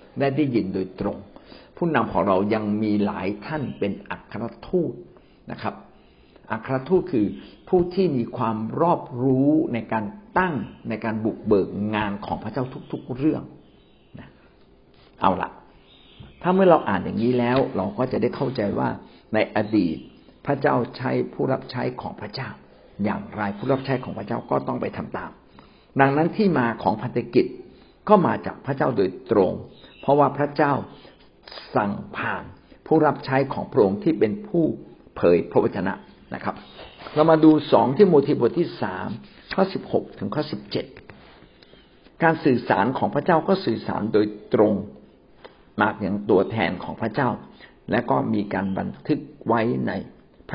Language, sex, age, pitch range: Thai, male, 60-79, 105-155 Hz